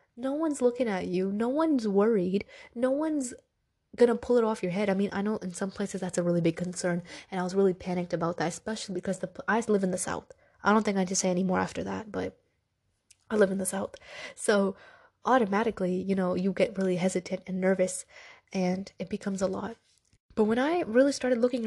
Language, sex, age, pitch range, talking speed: English, female, 20-39, 185-240 Hz, 220 wpm